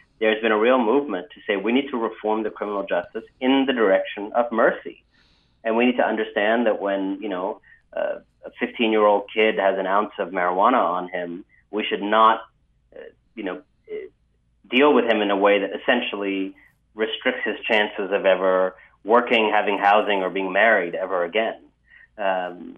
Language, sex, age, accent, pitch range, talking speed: English, male, 30-49, American, 95-125 Hz, 180 wpm